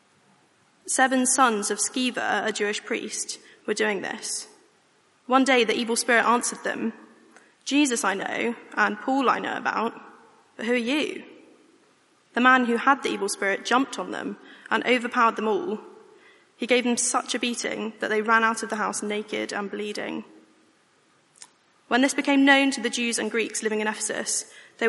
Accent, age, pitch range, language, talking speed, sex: British, 10-29, 215-255 Hz, English, 175 wpm, female